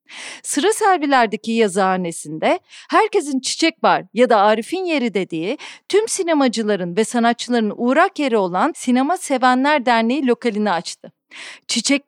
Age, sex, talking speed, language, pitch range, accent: 40-59, female, 120 wpm, Turkish, 225-315 Hz, native